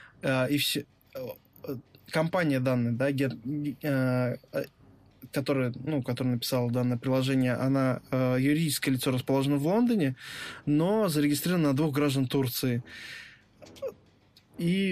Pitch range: 130-155 Hz